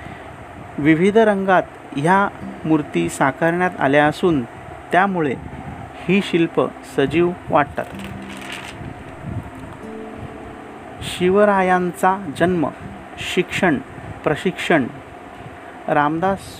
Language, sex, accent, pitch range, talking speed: Marathi, male, native, 145-180 Hz, 60 wpm